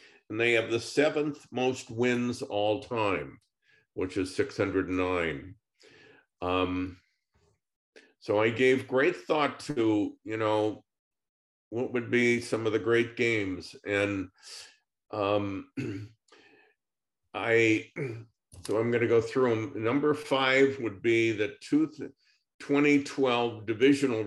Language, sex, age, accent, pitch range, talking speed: English, male, 50-69, American, 100-120 Hz, 110 wpm